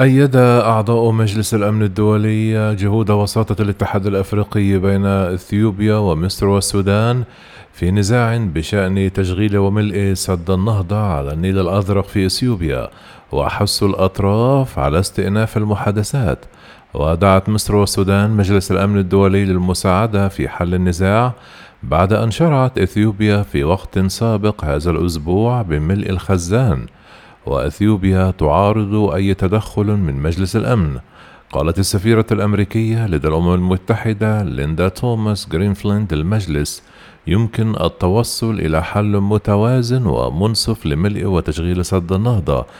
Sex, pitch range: male, 90-110 Hz